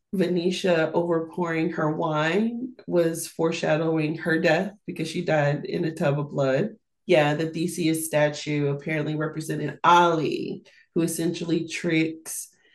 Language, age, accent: English, 30-49, American